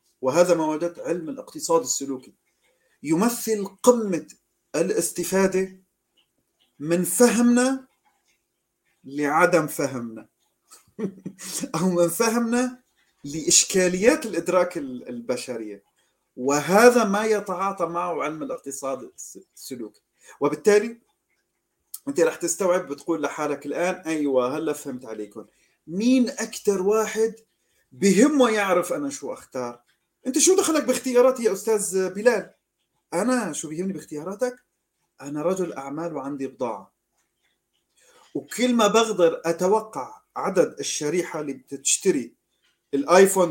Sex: male